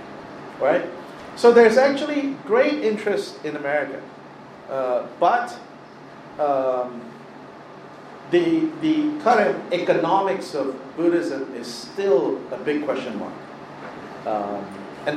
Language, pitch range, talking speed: English, 135-220 Hz, 100 wpm